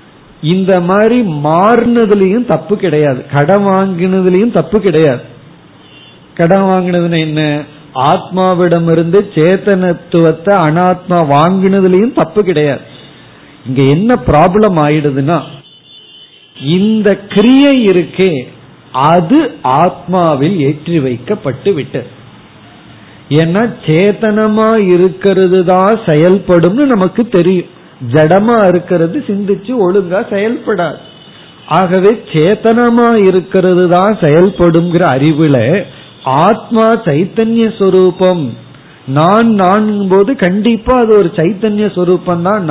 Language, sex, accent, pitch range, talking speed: Tamil, male, native, 155-210 Hz, 75 wpm